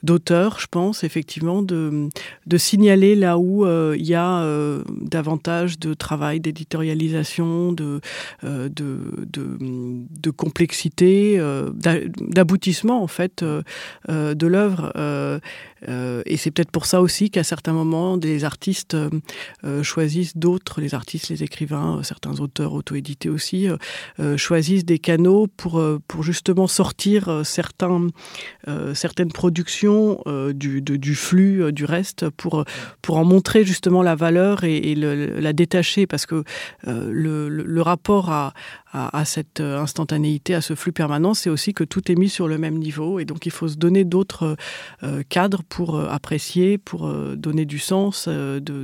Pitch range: 150-180 Hz